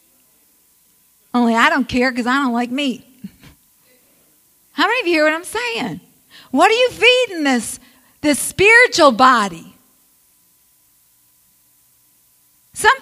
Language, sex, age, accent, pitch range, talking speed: English, female, 50-69, American, 240-320 Hz, 120 wpm